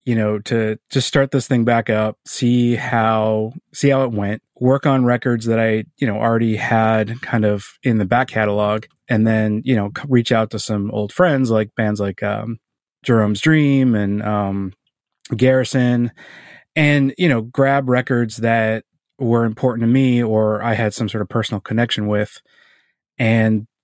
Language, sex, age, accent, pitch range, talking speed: English, male, 30-49, American, 110-125 Hz, 175 wpm